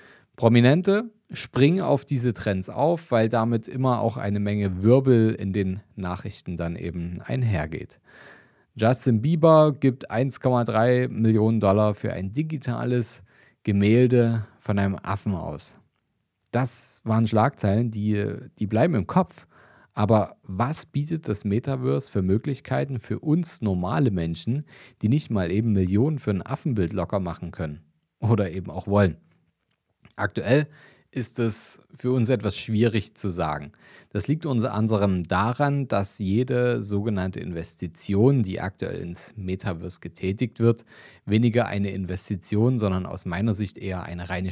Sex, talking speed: male, 135 wpm